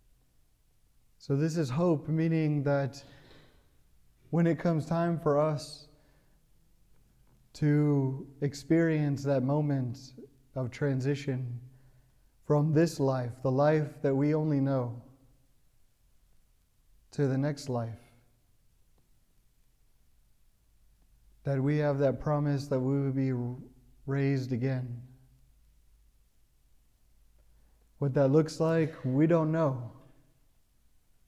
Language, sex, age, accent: English, male, 30-49, American